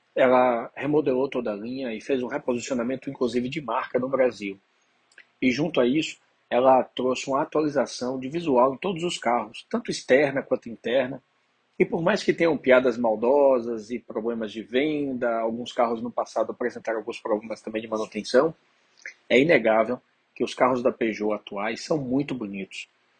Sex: male